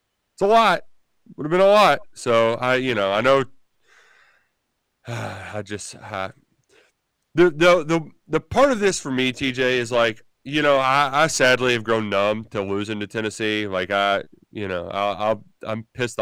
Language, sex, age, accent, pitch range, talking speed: English, male, 30-49, American, 110-145 Hz, 180 wpm